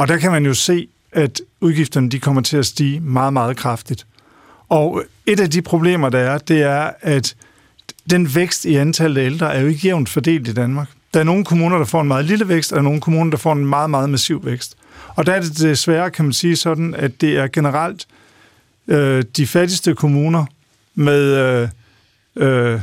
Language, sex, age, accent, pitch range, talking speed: Danish, male, 50-69, native, 135-165 Hz, 215 wpm